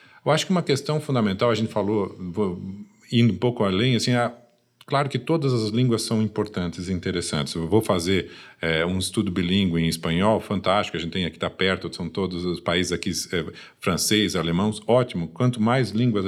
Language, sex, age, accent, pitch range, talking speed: Portuguese, male, 50-69, Brazilian, 100-135 Hz, 195 wpm